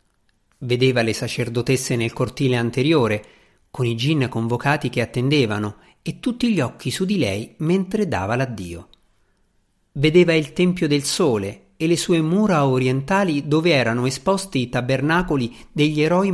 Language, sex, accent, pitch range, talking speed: Italian, male, native, 115-160 Hz, 145 wpm